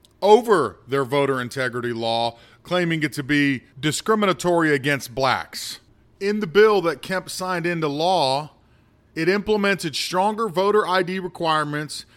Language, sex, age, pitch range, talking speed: English, male, 40-59, 140-200 Hz, 130 wpm